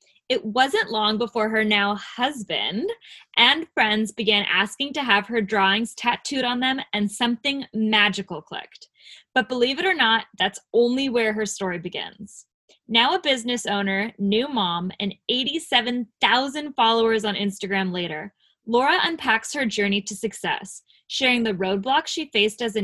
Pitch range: 200-255 Hz